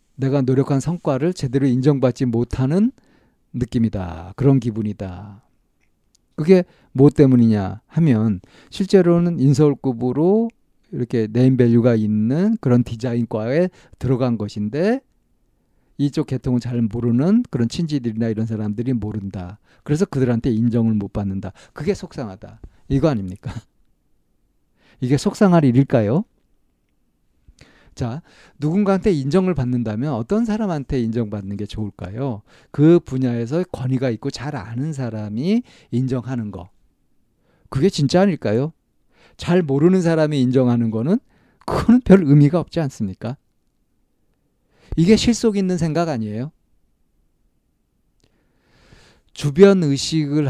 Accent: native